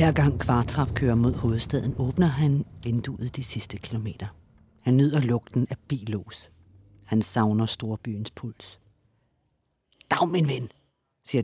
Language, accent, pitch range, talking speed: Danish, native, 110-140 Hz, 135 wpm